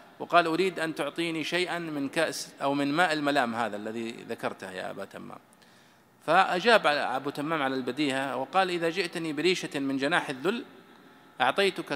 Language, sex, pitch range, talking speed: Arabic, male, 115-145 Hz, 150 wpm